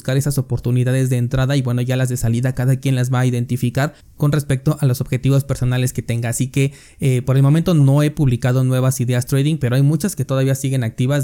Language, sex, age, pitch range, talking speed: Spanish, male, 20-39, 125-145 Hz, 230 wpm